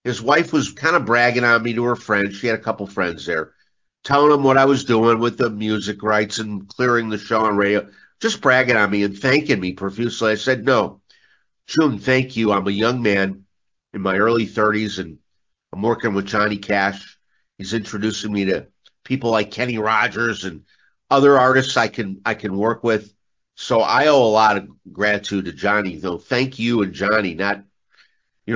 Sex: male